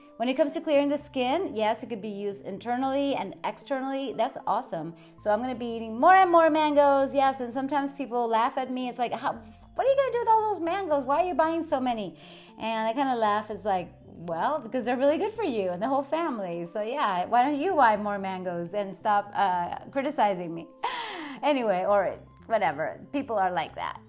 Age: 30-49